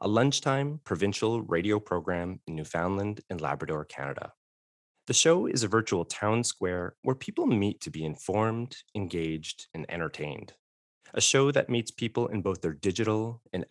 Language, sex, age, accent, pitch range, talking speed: English, male, 30-49, American, 85-115 Hz, 160 wpm